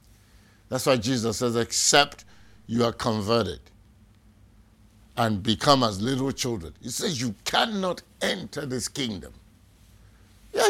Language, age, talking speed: English, 60-79, 120 wpm